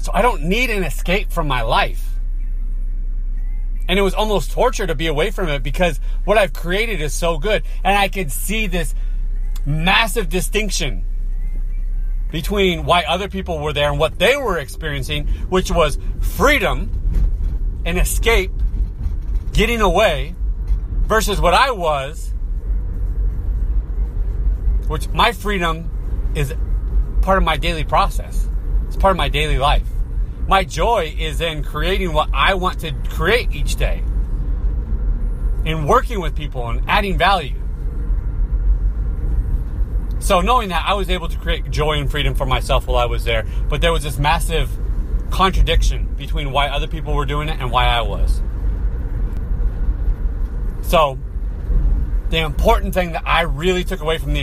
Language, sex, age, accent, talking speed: English, male, 30-49, American, 150 wpm